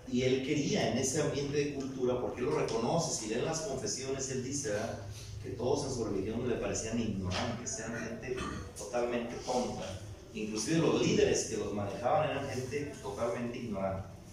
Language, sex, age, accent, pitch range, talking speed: Spanish, male, 40-59, Mexican, 105-135 Hz, 170 wpm